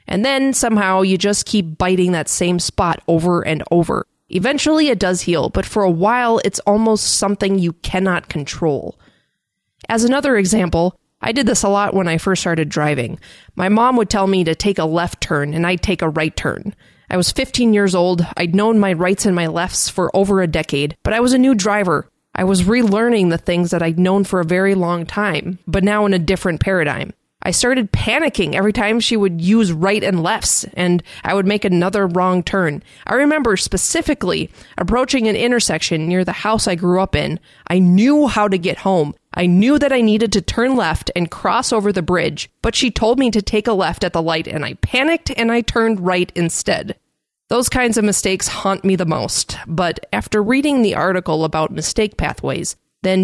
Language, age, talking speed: English, 20-39, 205 wpm